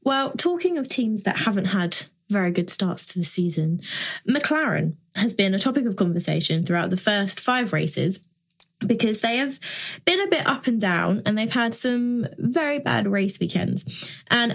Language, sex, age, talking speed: English, female, 20-39, 175 wpm